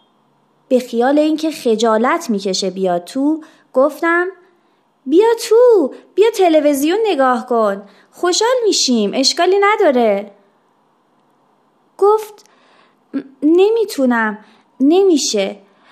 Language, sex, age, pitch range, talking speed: Persian, female, 30-49, 220-360 Hz, 80 wpm